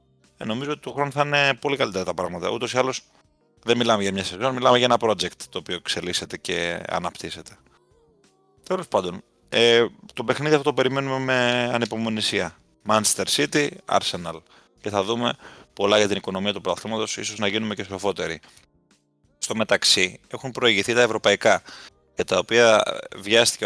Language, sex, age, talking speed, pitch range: Greek, male, 30-49, 165 wpm, 100-125 Hz